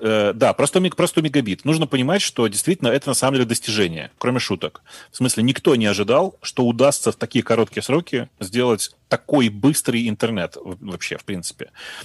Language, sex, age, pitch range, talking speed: Russian, male, 30-49, 105-130 Hz, 160 wpm